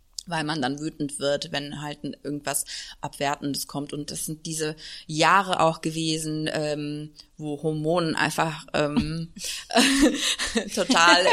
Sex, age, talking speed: female, 20-39, 125 wpm